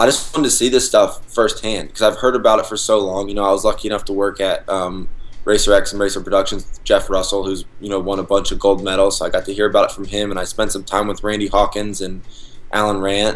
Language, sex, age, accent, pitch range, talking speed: English, male, 20-39, American, 100-120 Hz, 285 wpm